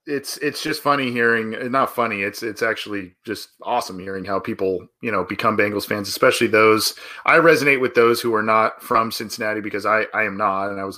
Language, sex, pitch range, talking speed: English, male, 105-145 Hz, 215 wpm